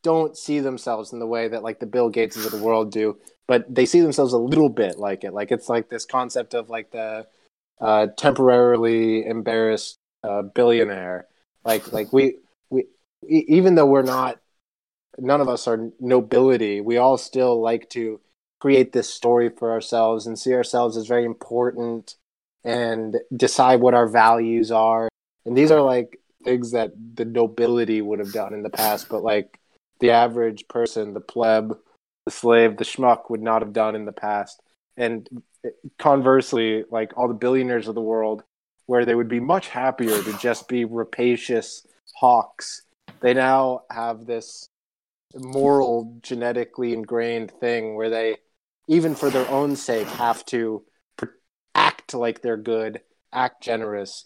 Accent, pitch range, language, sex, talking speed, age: American, 110-125 Hz, English, male, 165 wpm, 20-39